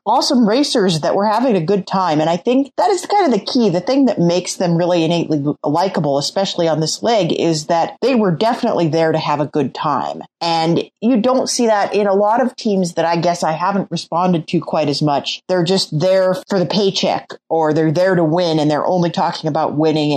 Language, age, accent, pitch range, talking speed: English, 30-49, American, 155-200 Hz, 230 wpm